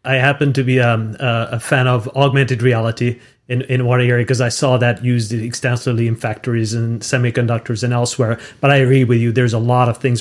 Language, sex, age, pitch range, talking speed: English, male, 40-59, 120-150 Hz, 205 wpm